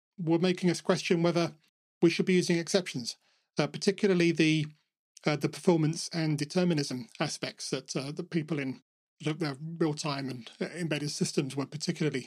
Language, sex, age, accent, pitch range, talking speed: English, male, 40-59, British, 150-180 Hz, 155 wpm